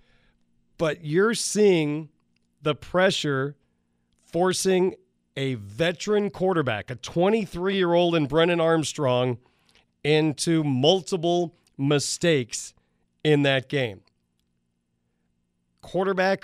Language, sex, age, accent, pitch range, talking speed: English, male, 40-59, American, 135-175 Hz, 75 wpm